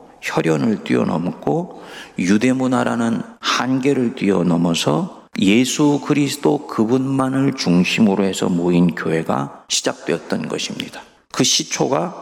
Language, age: Korean, 50-69